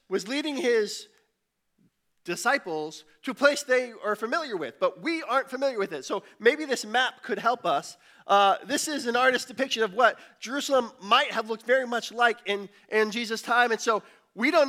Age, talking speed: 20-39, 190 wpm